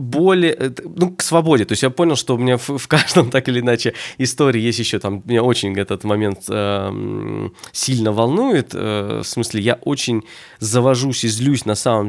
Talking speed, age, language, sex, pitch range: 190 wpm, 20-39, Russian, male, 105-125 Hz